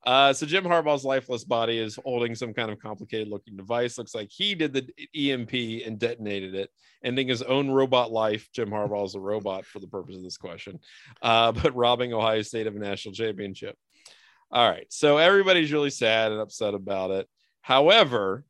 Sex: male